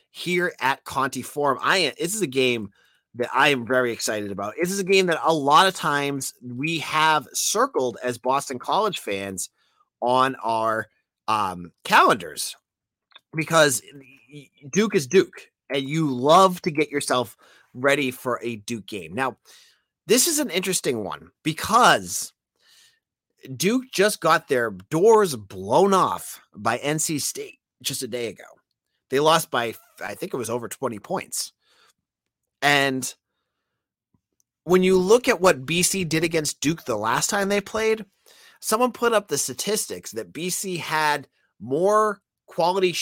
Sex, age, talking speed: male, 30-49, 150 wpm